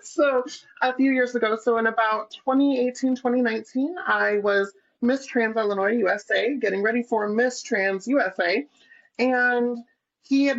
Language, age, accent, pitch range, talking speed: English, 30-49, American, 205-255 Hz, 140 wpm